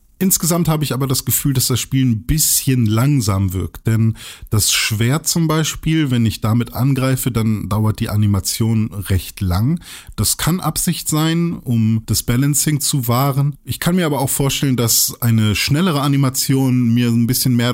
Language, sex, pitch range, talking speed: German, male, 105-130 Hz, 175 wpm